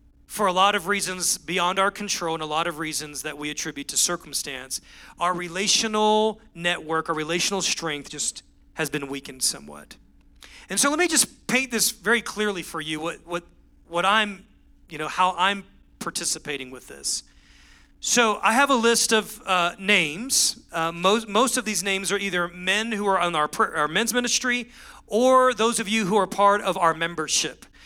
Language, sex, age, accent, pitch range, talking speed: English, male, 40-59, American, 160-205 Hz, 185 wpm